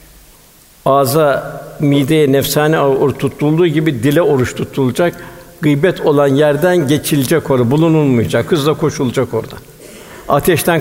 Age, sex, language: 60-79, male, Turkish